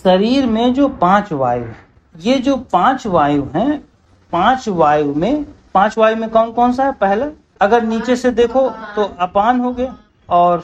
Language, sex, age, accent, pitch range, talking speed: Hindi, male, 50-69, native, 165-260 Hz, 175 wpm